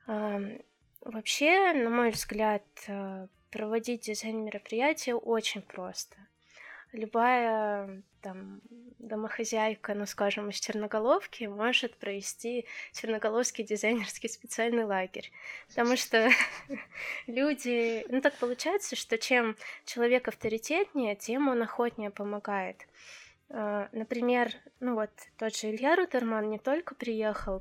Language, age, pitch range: Russian, 20-39, 210-245 Hz